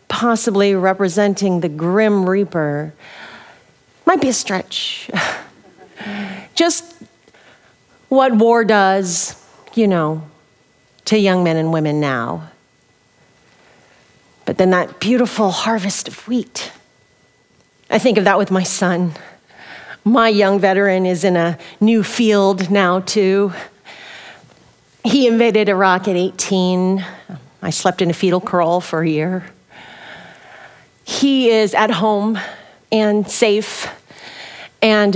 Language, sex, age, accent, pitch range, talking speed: English, female, 40-59, American, 180-215 Hz, 115 wpm